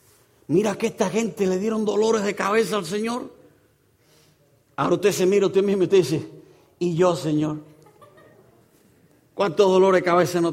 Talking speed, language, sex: 160 wpm, English, male